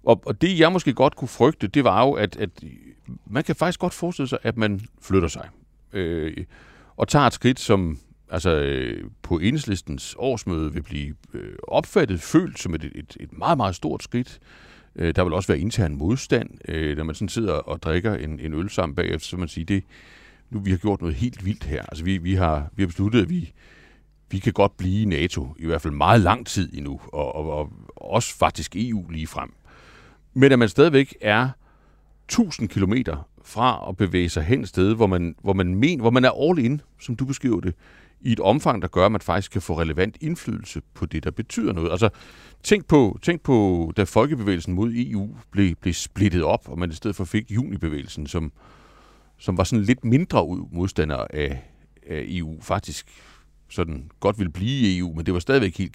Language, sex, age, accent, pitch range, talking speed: Danish, male, 60-79, native, 85-120 Hz, 210 wpm